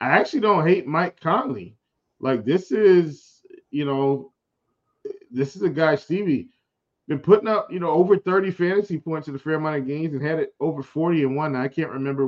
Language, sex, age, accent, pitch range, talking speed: English, male, 20-39, American, 125-155 Hz, 200 wpm